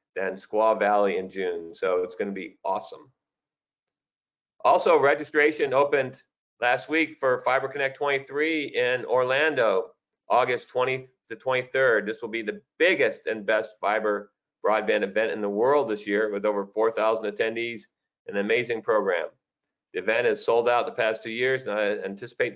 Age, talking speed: 50-69, 160 wpm